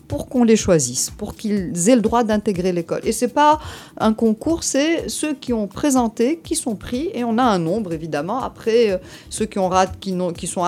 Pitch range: 165-240 Hz